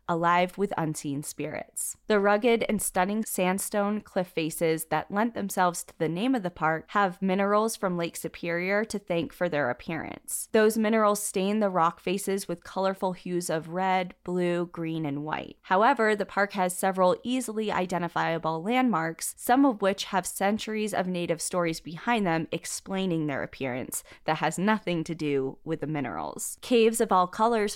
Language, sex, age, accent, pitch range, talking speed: English, female, 20-39, American, 165-200 Hz, 170 wpm